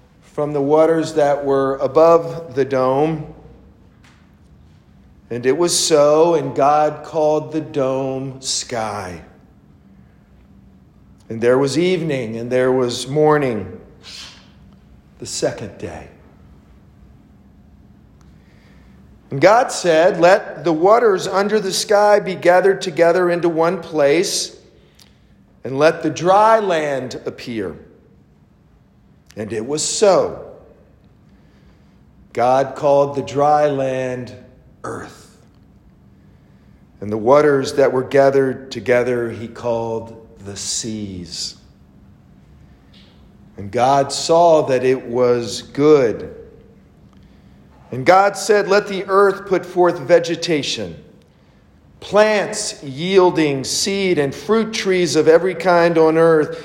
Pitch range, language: 115-170 Hz, English